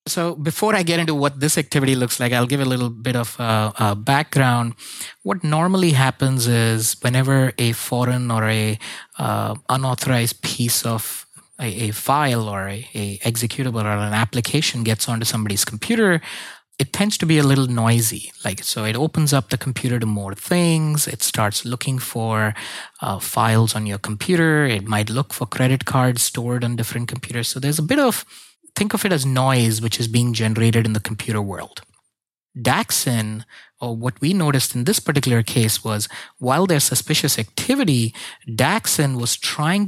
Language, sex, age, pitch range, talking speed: English, male, 20-39, 110-140 Hz, 175 wpm